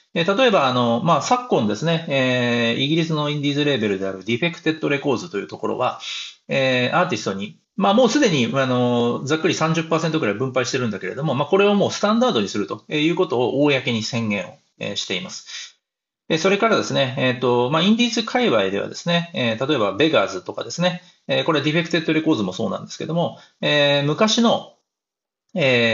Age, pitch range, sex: 40-59, 120-175 Hz, male